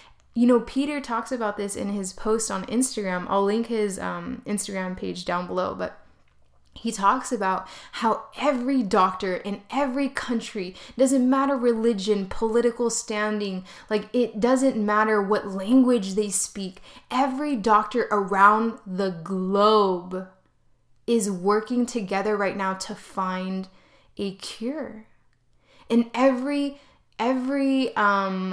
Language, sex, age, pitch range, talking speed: English, female, 20-39, 195-245 Hz, 125 wpm